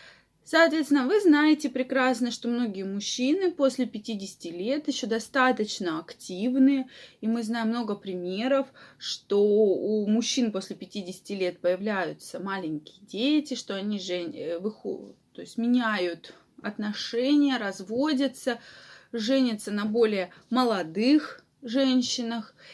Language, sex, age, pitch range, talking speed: Russian, female, 20-39, 210-270 Hz, 100 wpm